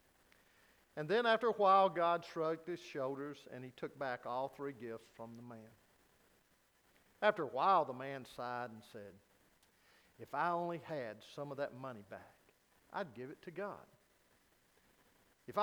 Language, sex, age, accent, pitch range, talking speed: English, male, 50-69, American, 120-195 Hz, 160 wpm